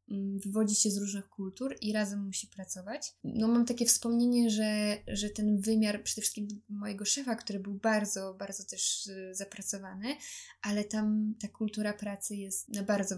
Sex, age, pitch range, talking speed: female, 10-29, 195-220 Hz, 160 wpm